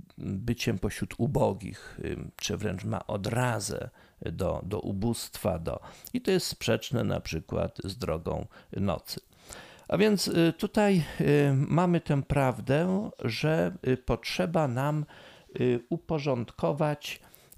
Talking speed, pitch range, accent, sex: 100 wpm, 105-145 Hz, native, male